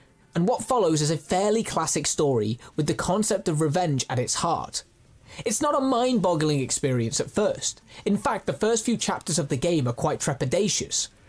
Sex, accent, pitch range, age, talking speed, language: male, British, 140-195 Hz, 20-39, 190 wpm, Italian